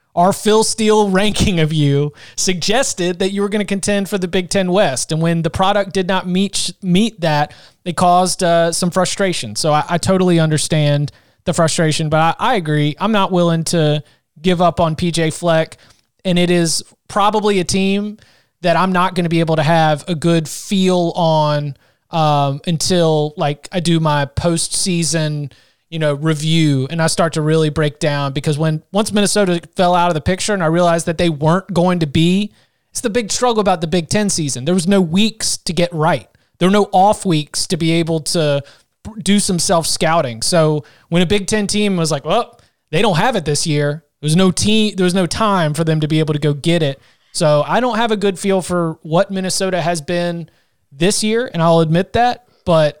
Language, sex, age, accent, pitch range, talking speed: English, male, 30-49, American, 155-190 Hz, 210 wpm